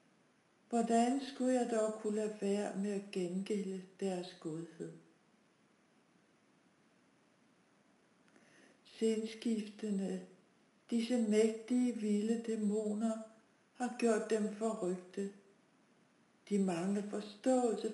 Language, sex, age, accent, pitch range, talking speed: Danish, female, 60-79, native, 195-225 Hz, 80 wpm